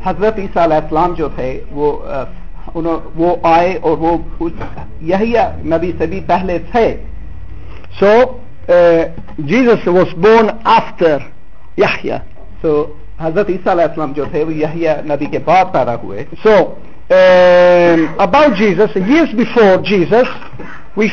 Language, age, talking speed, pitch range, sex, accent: Italian, 60-79, 55 wpm, 155-230 Hz, male, Indian